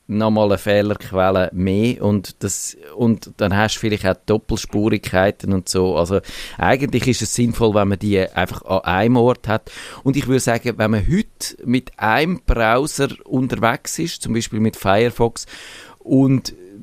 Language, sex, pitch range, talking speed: German, male, 95-115 Hz, 160 wpm